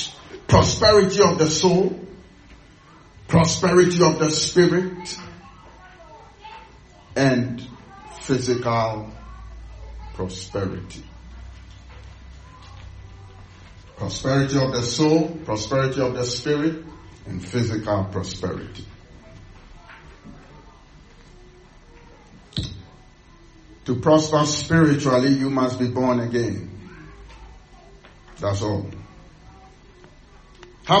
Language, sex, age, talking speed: English, male, 50-69, 65 wpm